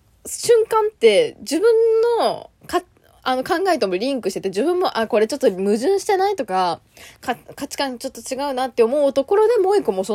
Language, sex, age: Japanese, female, 20-39